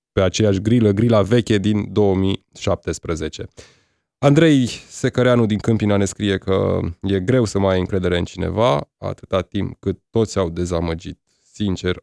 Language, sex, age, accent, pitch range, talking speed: Romanian, male, 20-39, native, 95-125 Hz, 145 wpm